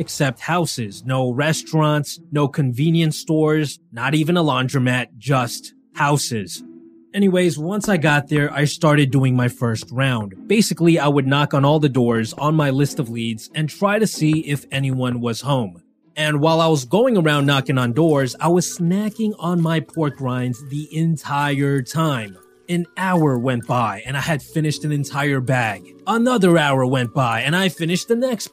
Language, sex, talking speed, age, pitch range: English, male, 175 wpm, 20-39, 130-175 Hz